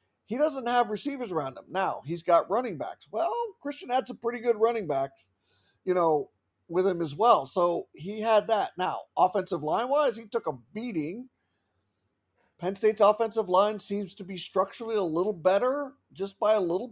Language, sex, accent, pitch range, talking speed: English, male, American, 170-230 Hz, 180 wpm